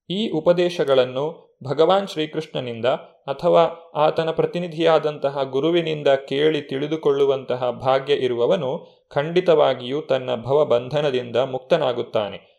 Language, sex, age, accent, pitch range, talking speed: Kannada, male, 30-49, native, 130-160 Hz, 80 wpm